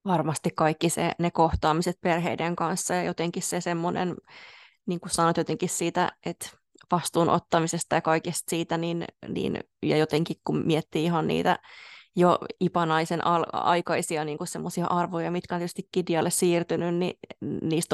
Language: Finnish